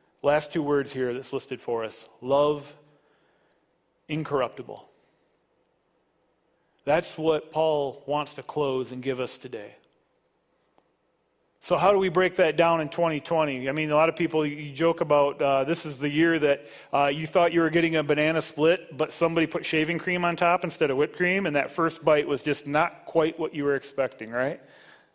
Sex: male